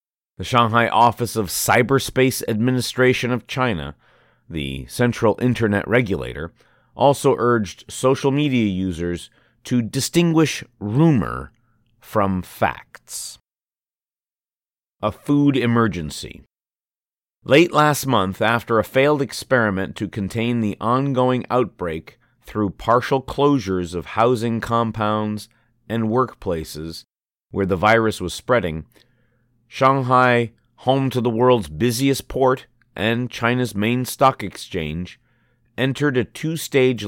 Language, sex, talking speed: English, male, 105 wpm